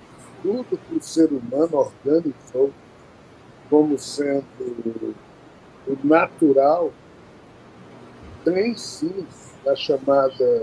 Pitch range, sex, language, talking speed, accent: 150-215 Hz, male, Portuguese, 80 wpm, Brazilian